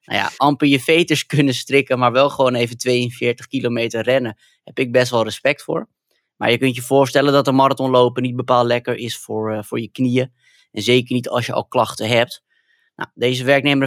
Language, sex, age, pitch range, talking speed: Dutch, male, 20-39, 115-140 Hz, 210 wpm